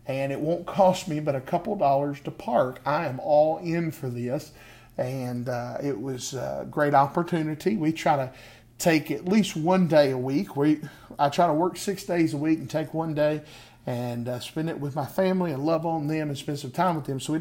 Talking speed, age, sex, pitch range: 225 wpm, 40-59, male, 130-165 Hz